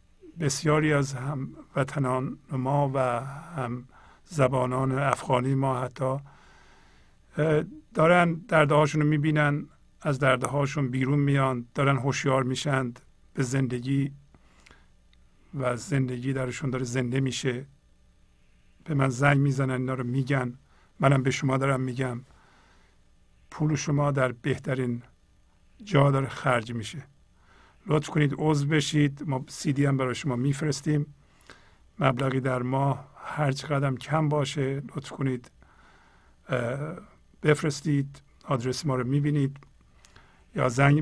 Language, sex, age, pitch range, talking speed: Persian, male, 50-69, 130-145 Hz, 110 wpm